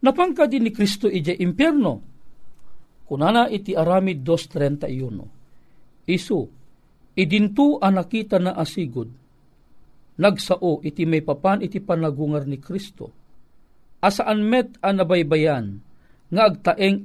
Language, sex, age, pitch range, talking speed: Filipino, male, 40-59, 150-195 Hz, 100 wpm